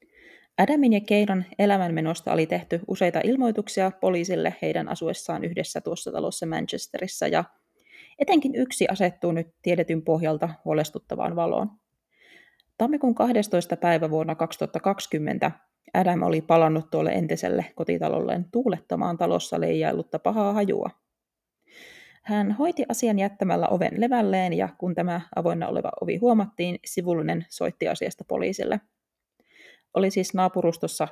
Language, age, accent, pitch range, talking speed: Finnish, 20-39, native, 165-215 Hz, 115 wpm